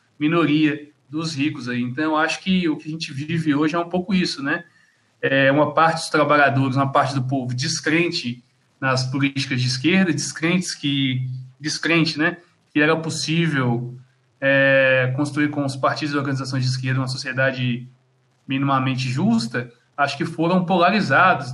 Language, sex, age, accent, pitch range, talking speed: Portuguese, male, 20-39, Brazilian, 130-165 Hz, 155 wpm